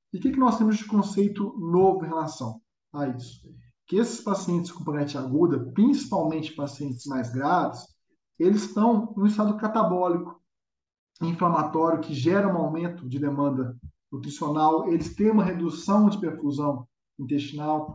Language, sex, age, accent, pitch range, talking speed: Portuguese, male, 20-39, Brazilian, 155-205 Hz, 145 wpm